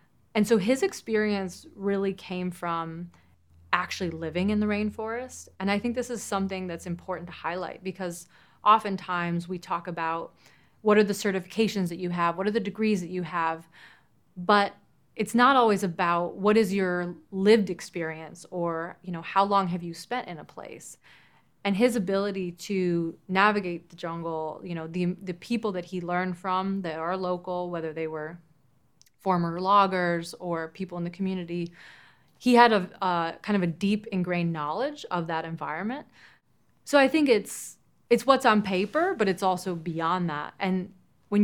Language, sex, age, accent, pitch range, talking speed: English, female, 30-49, American, 170-200 Hz, 170 wpm